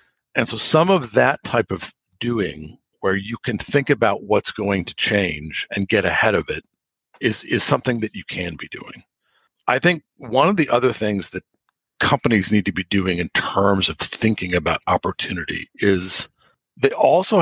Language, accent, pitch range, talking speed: English, American, 95-135 Hz, 180 wpm